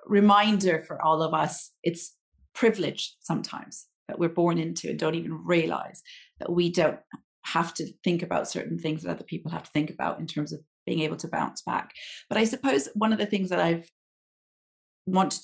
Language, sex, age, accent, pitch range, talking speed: English, female, 30-49, British, 155-195 Hz, 195 wpm